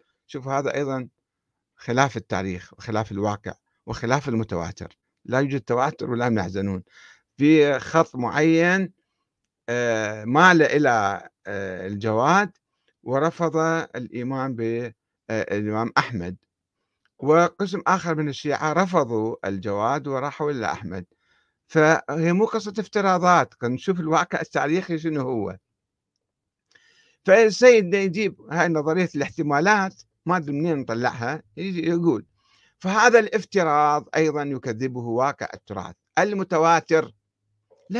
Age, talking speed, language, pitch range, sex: 50-69, 95 wpm, Arabic, 120-185 Hz, male